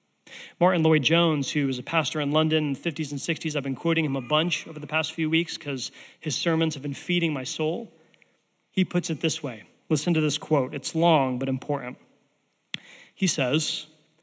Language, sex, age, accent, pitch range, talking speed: English, male, 40-59, American, 145-185 Hz, 205 wpm